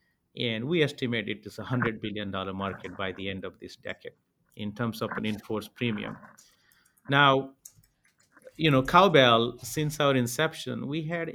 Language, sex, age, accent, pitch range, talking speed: English, male, 50-69, Indian, 105-130 Hz, 160 wpm